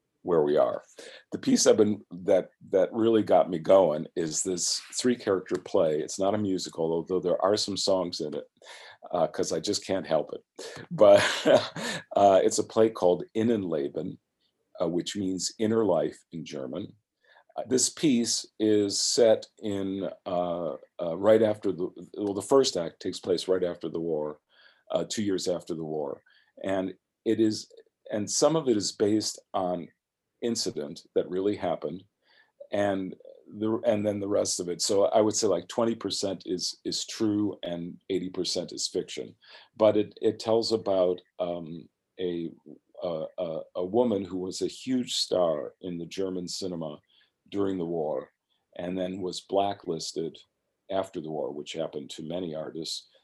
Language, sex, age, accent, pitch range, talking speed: English, male, 50-69, American, 90-110 Hz, 165 wpm